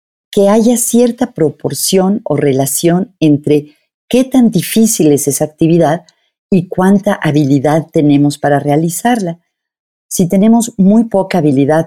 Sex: female